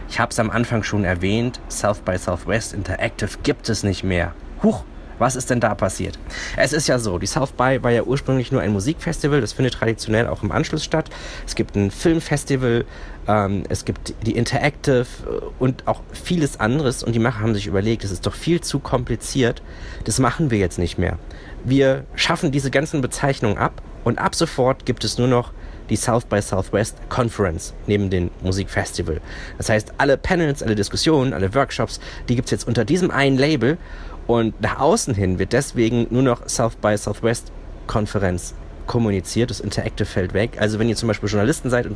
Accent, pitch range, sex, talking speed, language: German, 100-125 Hz, male, 190 wpm, German